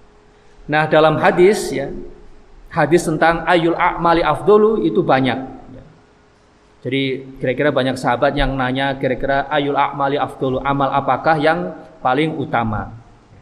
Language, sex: Indonesian, male